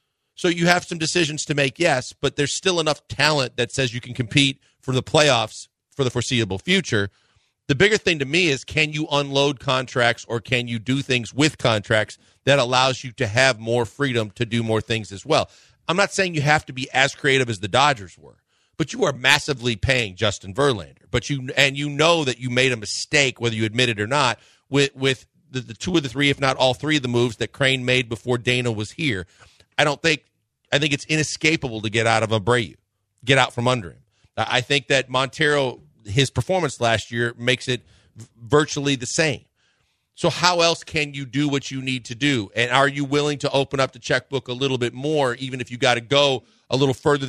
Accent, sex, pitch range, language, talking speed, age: American, male, 120-145 Hz, English, 225 wpm, 40-59